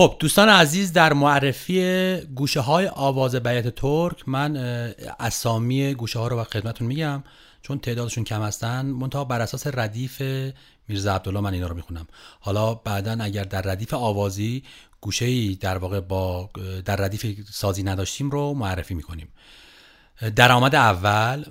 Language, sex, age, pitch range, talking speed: Persian, male, 40-59, 105-140 Hz, 140 wpm